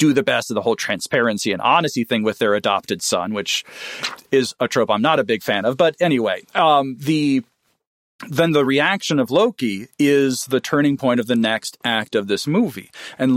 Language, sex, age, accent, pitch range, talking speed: English, male, 40-59, American, 125-160 Hz, 205 wpm